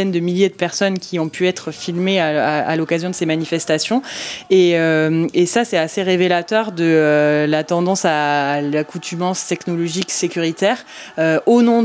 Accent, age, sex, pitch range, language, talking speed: French, 20-39, female, 165-200 Hz, French, 175 wpm